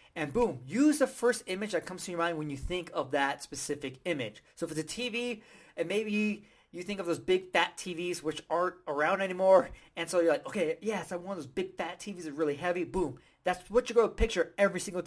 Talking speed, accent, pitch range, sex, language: 240 wpm, American, 155-225 Hz, male, English